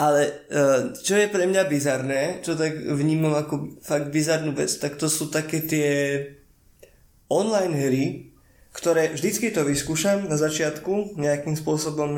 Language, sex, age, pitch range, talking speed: Slovak, male, 20-39, 145-190 Hz, 140 wpm